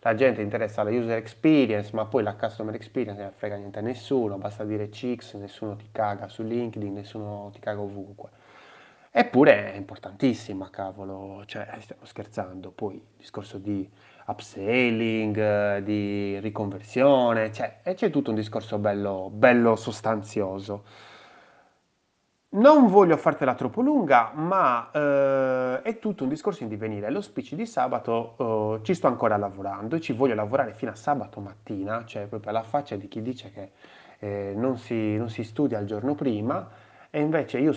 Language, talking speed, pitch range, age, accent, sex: Italian, 155 wpm, 105-135 Hz, 30-49, native, male